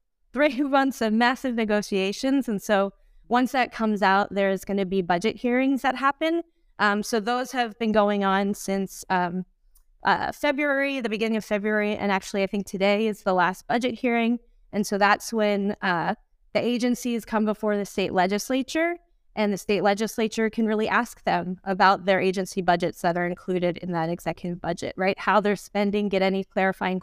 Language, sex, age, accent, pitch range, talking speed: English, female, 20-39, American, 195-240 Hz, 180 wpm